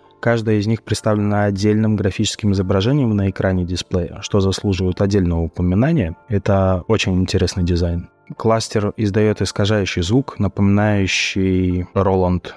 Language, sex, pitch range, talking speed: Russian, male, 95-110 Hz, 115 wpm